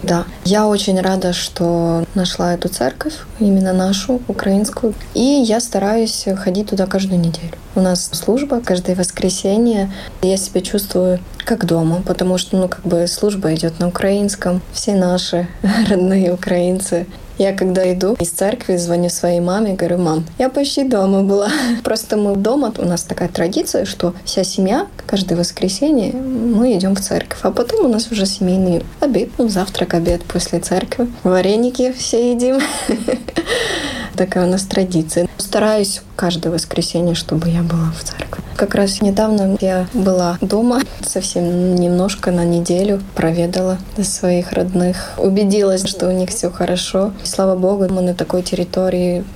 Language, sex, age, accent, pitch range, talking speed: Russian, female, 20-39, native, 180-210 Hz, 150 wpm